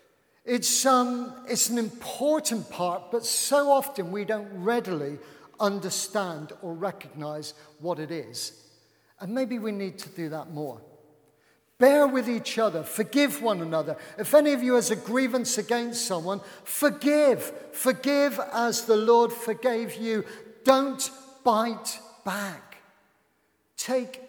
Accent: British